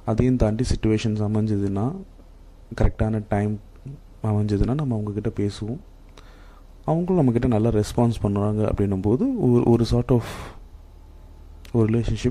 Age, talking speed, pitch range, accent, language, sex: 30-49, 110 wpm, 100-145 Hz, native, Tamil, male